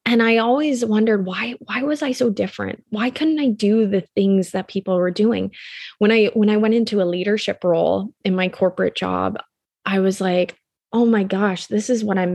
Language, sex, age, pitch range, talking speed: English, female, 20-39, 195-230 Hz, 210 wpm